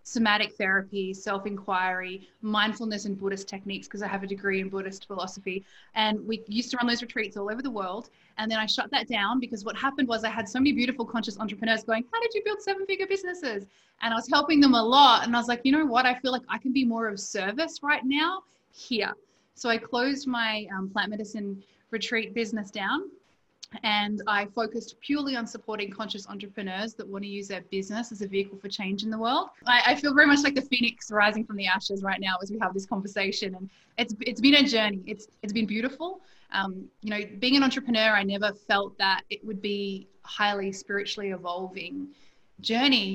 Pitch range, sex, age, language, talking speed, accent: 200-245 Hz, female, 20-39, English, 215 wpm, Australian